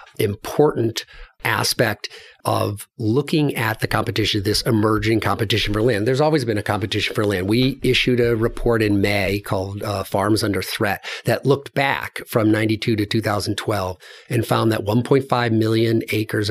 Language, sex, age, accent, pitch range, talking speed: English, male, 50-69, American, 105-130 Hz, 155 wpm